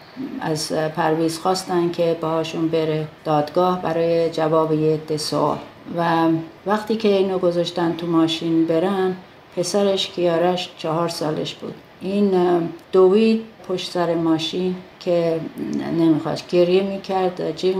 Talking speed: 115 wpm